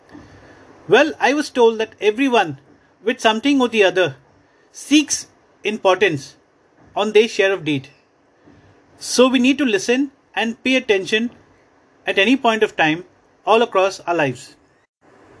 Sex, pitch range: male, 190-270 Hz